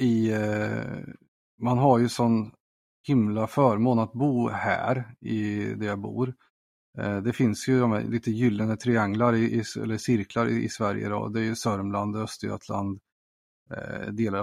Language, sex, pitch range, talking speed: Swedish, male, 105-120 Hz, 155 wpm